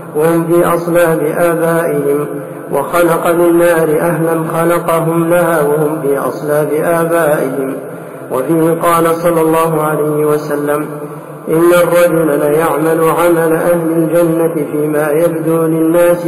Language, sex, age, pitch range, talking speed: Arabic, male, 50-69, 160-170 Hz, 105 wpm